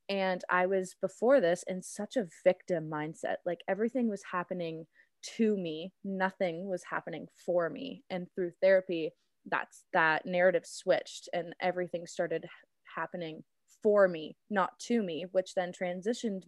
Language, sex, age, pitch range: English, female, 20-39, 175-195 Hz